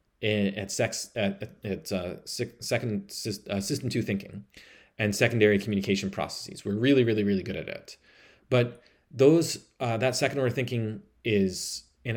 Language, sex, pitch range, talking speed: English, male, 100-115 Hz, 160 wpm